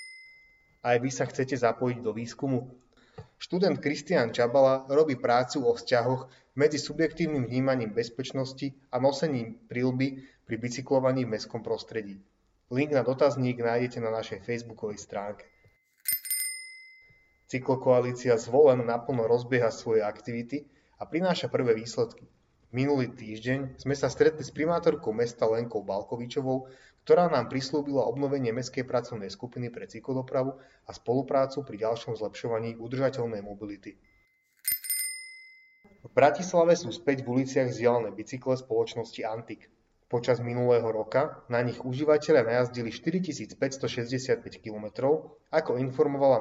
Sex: male